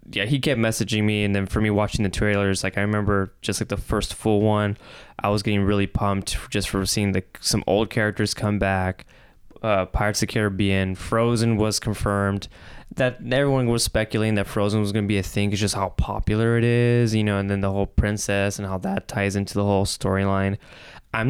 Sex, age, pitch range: male, 20-39, 100-110 Hz